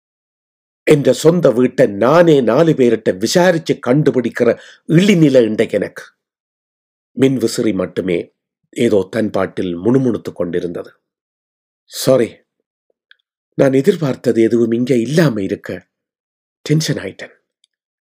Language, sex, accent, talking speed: Tamil, male, native, 70 wpm